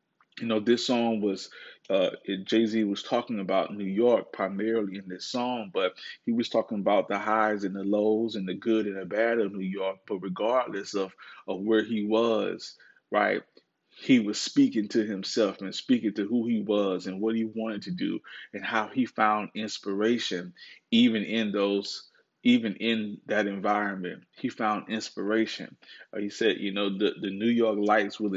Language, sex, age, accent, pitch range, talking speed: English, male, 20-39, American, 100-110 Hz, 180 wpm